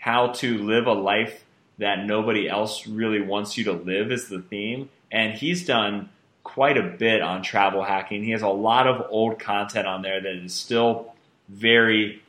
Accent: American